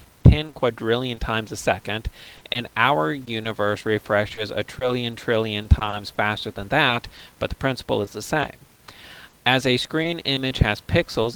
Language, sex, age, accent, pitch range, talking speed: English, male, 40-59, American, 100-125 Hz, 150 wpm